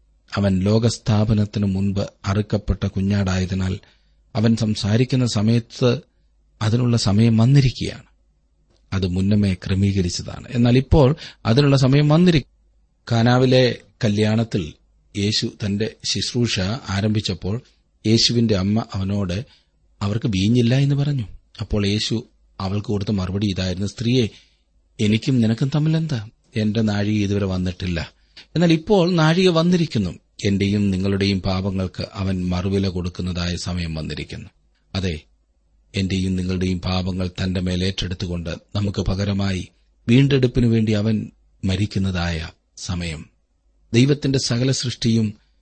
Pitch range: 90-115 Hz